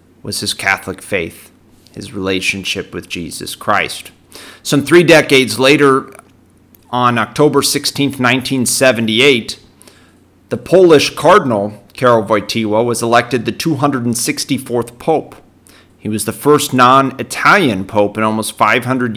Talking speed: 115 wpm